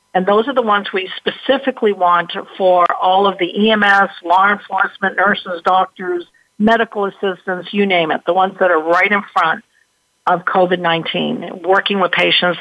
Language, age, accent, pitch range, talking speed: English, 50-69, American, 180-220 Hz, 160 wpm